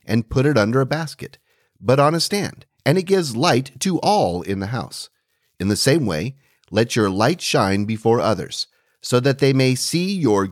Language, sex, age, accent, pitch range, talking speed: English, male, 40-59, American, 110-160 Hz, 200 wpm